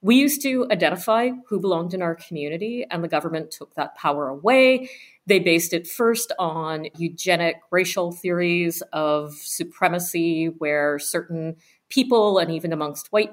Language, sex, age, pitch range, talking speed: English, female, 40-59, 160-190 Hz, 150 wpm